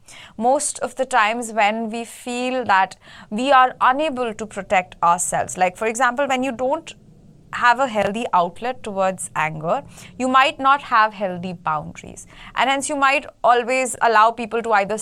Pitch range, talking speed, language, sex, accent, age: 200-280 Hz, 165 wpm, English, female, Indian, 30-49